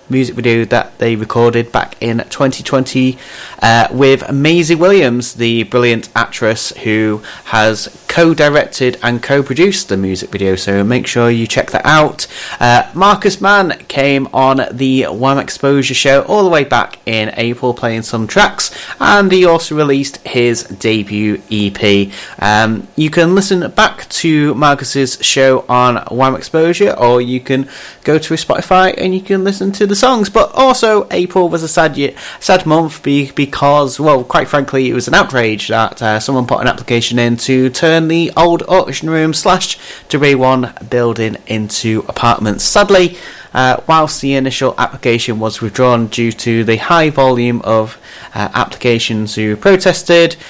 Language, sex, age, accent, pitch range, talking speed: English, male, 30-49, British, 115-160 Hz, 160 wpm